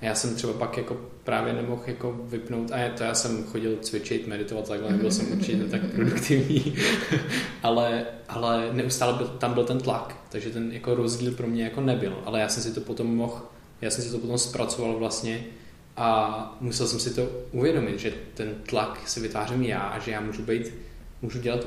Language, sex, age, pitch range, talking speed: Czech, male, 20-39, 110-125 Hz, 195 wpm